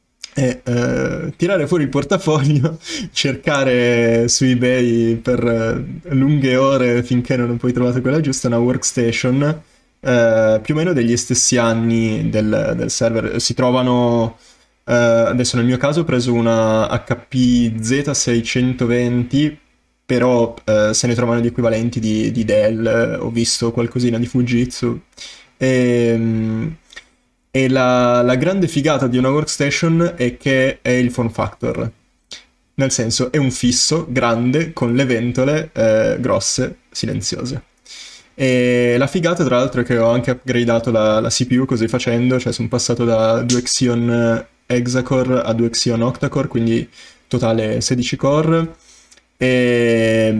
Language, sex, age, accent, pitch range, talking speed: Italian, male, 20-39, native, 115-130 Hz, 145 wpm